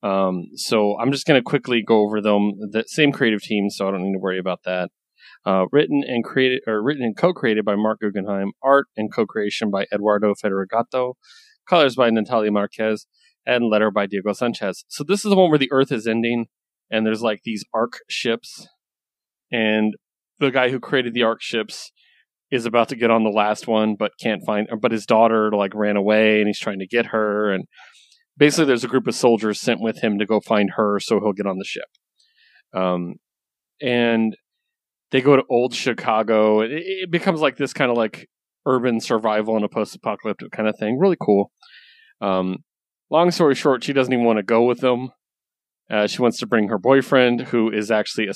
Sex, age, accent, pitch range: male, 30-49, American, 105-125 Hz